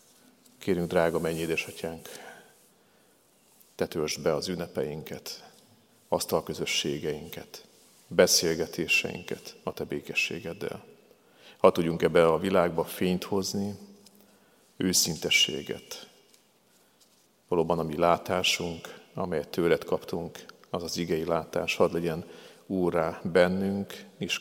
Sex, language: male, Hungarian